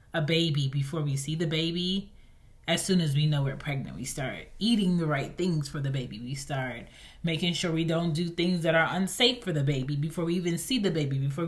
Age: 20-39